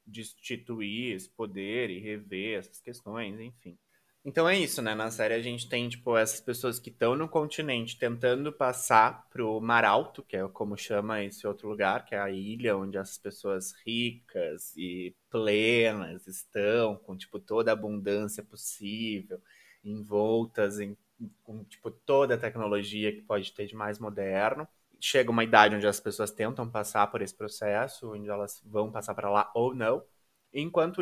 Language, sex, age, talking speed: Portuguese, male, 20-39, 165 wpm